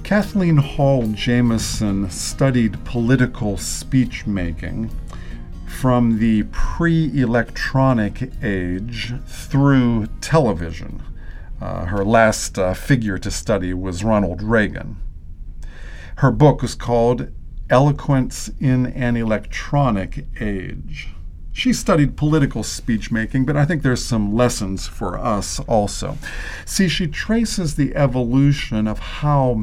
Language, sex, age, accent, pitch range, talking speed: English, male, 50-69, American, 95-135 Hz, 105 wpm